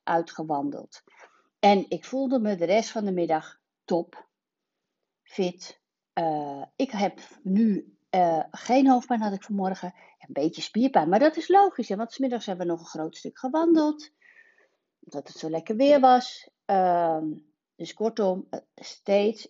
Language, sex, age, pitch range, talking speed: Dutch, female, 60-79, 170-250 Hz, 155 wpm